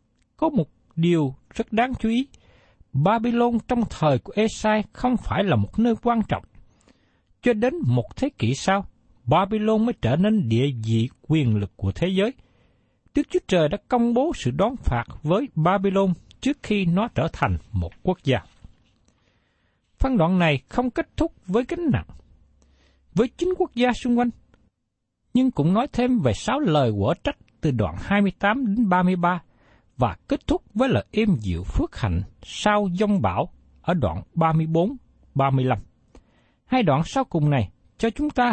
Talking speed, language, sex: 165 wpm, Vietnamese, male